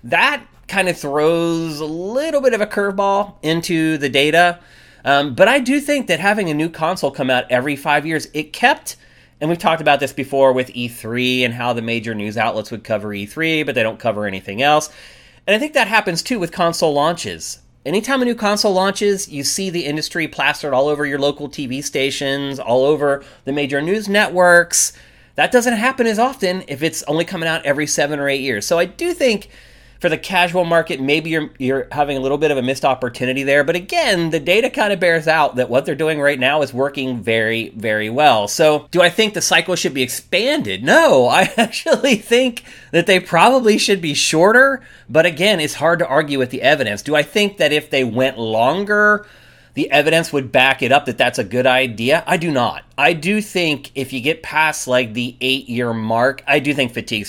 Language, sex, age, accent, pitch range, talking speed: English, male, 30-49, American, 130-180 Hz, 215 wpm